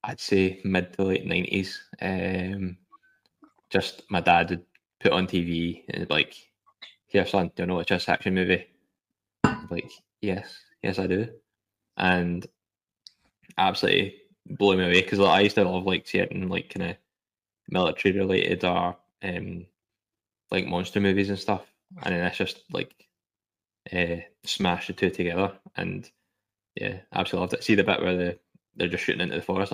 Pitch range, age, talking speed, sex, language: 90-100 Hz, 10-29, 170 wpm, male, English